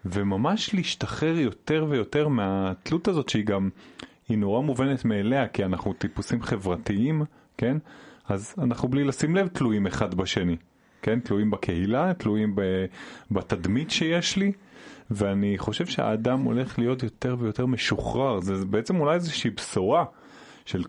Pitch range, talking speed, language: 105-155 Hz, 130 wpm, Hebrew